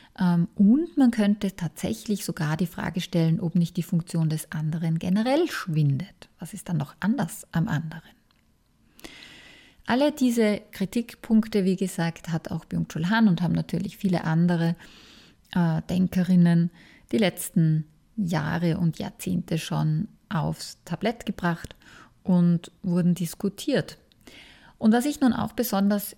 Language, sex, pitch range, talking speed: German, female, 165-205 Hz, 130 wpm